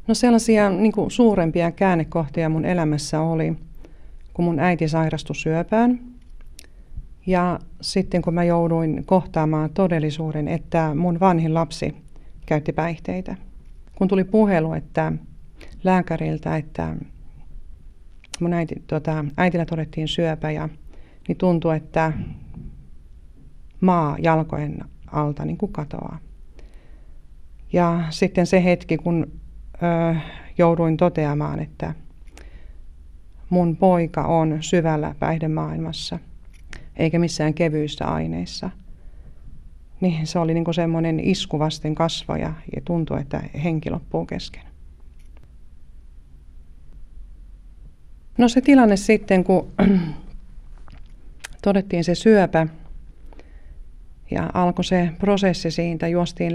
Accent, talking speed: native, 95 wpm